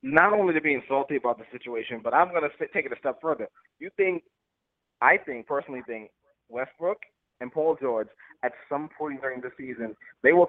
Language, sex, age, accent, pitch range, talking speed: English, male, 20-39, American, 130-170 Hz, 195 wpm